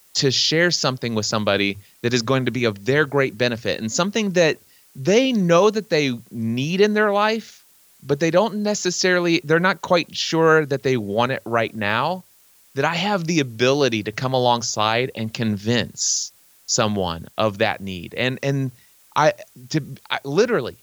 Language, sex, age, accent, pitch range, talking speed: English, male, 30-49, American, 115-155 Hz, 170 wpm